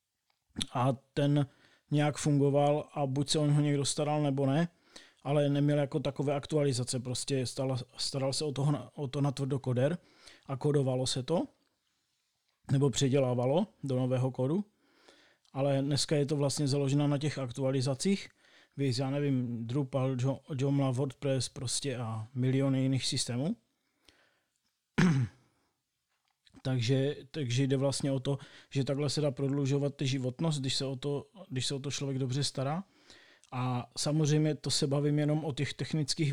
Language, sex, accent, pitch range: Czech, male, native, 135-145 Hz